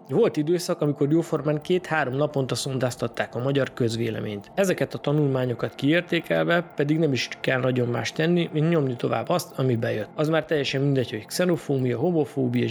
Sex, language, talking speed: male, Hungarian, 160 wpm